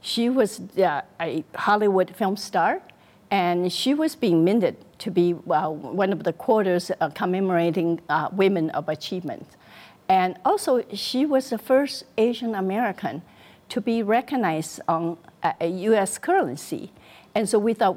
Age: 60-79